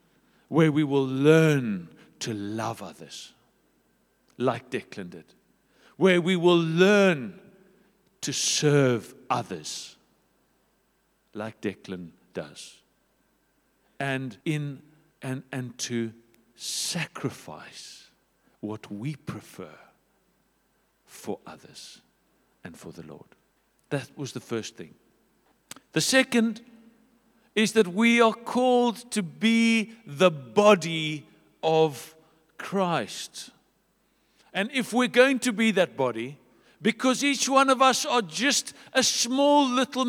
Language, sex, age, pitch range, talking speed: English, male, 60-79, 150-230 Hz, 105 wpm